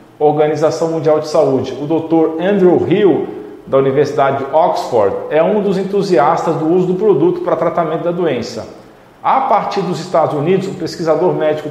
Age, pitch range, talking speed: 40-59, 165-205 Hz, 165 wpm